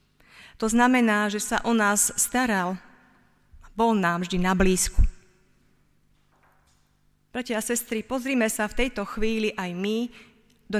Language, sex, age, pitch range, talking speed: Slovak, female, 30-49, 200-240 Hz, 130 wpm